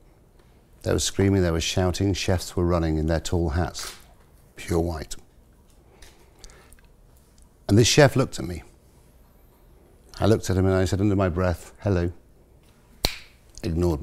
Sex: male